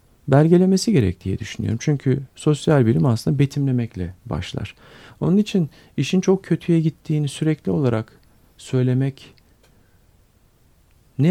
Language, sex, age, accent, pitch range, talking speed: Turkish, male, 50-69, native, 110-140 Hz, 105 wpm